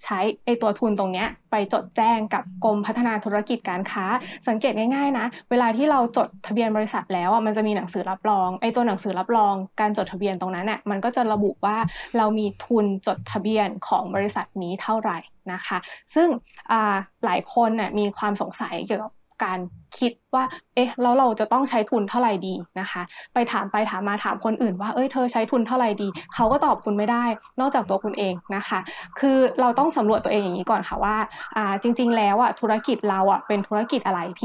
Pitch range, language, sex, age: 205-245 Hz, Thai, female, 20-39